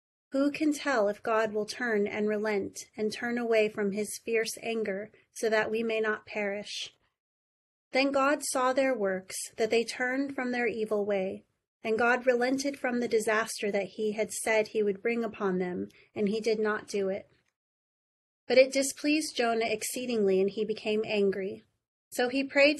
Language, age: English, 30-49